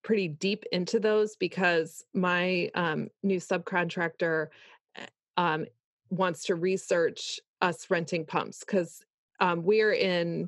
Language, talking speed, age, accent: English, 115 wpm, 20-39, American